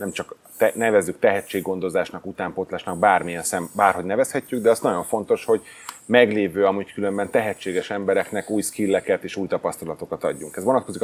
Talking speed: 150 wpm